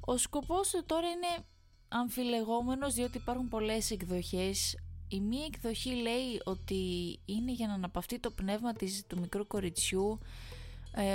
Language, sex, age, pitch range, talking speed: Greek, female, 20-39, 185-240 Hz, 140 wpm